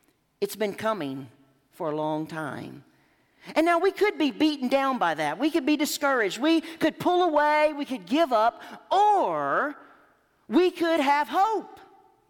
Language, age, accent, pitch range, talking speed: English, 40-59, American, 195-305 Hz, 160 wpm